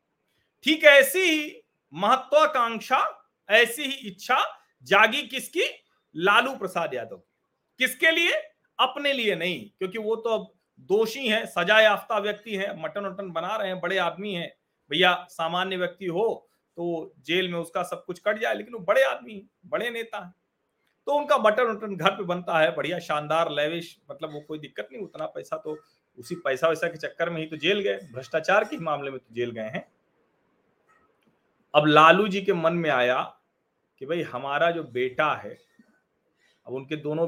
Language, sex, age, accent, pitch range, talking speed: Hindi, male, 40-59, native, 155-225 Hz, 170 wpm